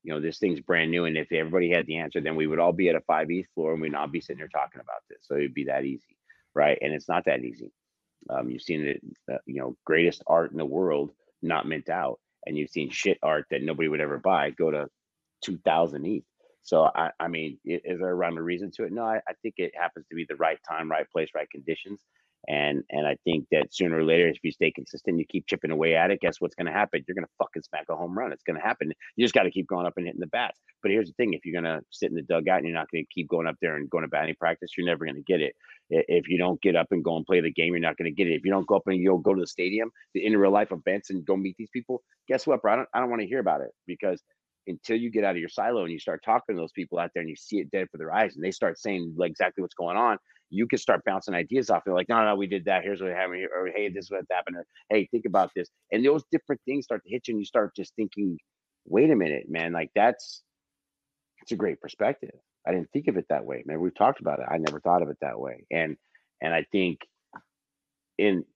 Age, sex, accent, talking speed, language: 30-49, male, American, 290 wpm, English